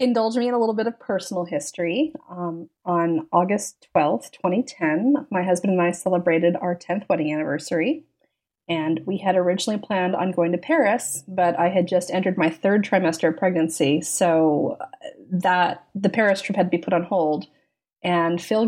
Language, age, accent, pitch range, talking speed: English, 30-49, American, 170-200 Hz, 175 wpm